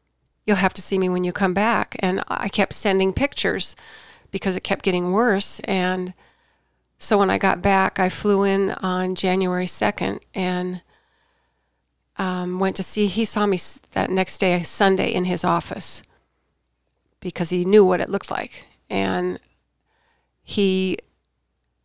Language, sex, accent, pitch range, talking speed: English, female, American, 175-195 Hz, 150 wpm